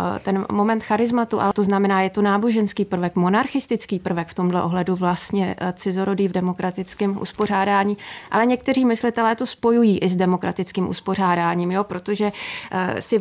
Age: 30-49